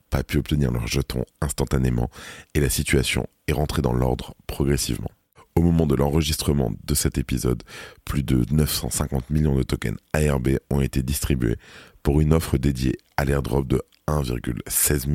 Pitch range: 65-80 Hz